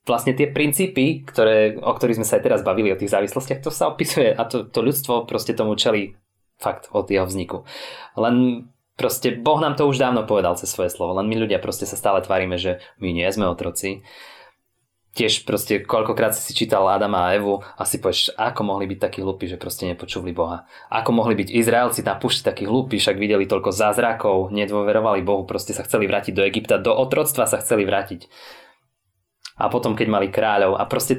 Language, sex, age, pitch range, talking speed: English, male, 20-39, 95-125 Hz, 200 wpm